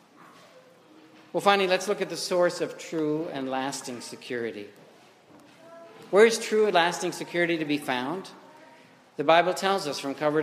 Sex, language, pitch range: male, English, 145-175 Hz